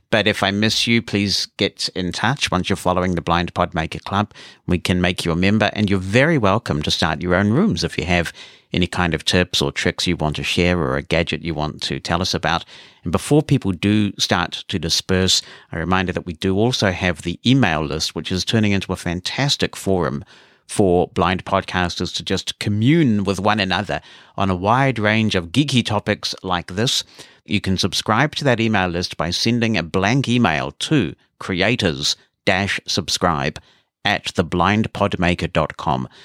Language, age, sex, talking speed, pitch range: English, 50-69, male, 185 wpm, 85-110 Hz